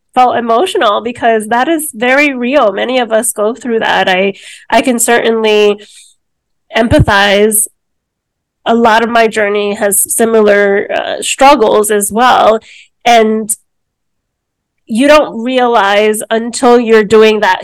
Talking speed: 125 wpm